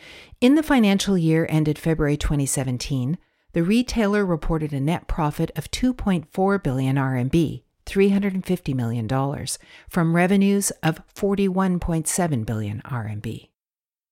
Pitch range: 140-190 Hz